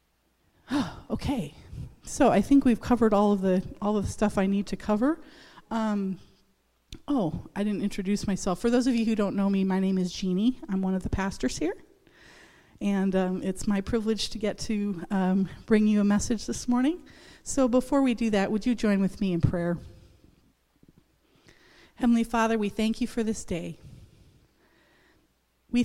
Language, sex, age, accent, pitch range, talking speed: English, female, 30-49, American, 180-220 Hz, 180 wpm